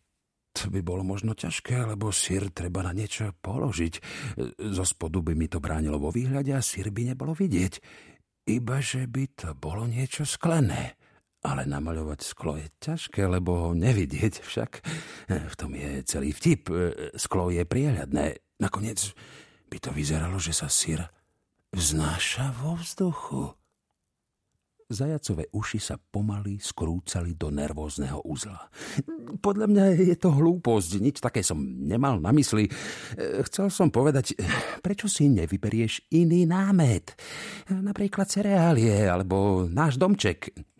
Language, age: Slovak, 50-69